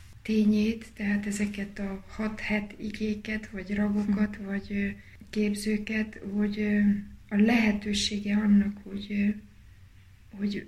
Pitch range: 195-210 Hz